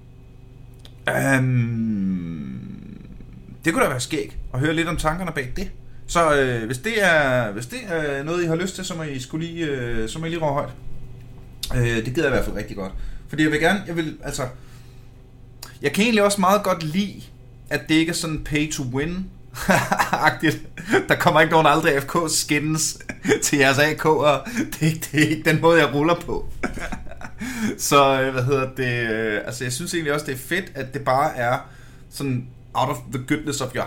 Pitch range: 125-155 Hz